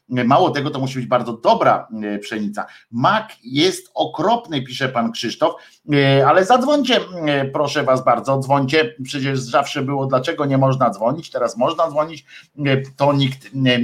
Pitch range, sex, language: 115-145 Hz, male, Polish